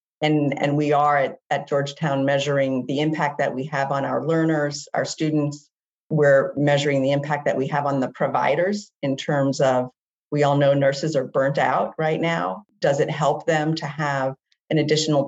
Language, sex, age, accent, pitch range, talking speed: English, female, 40-59, American, 135-155 Hz, 190 wpm